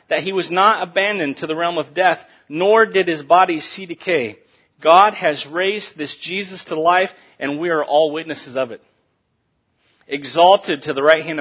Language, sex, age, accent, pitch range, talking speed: English, male, 40-59, American, 150-190 Hz, 185 wpm